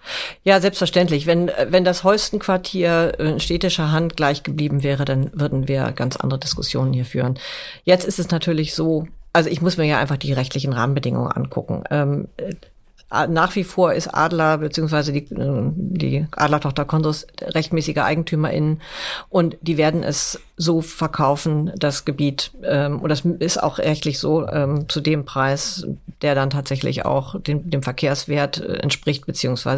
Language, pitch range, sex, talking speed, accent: German, 145-175 Hz, female, 150 wpm, German